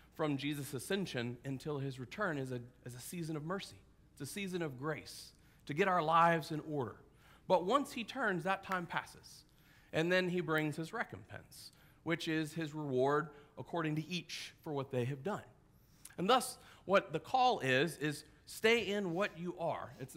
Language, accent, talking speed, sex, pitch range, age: English, American, 185 wpm, male, 130-175 Hz, 40-59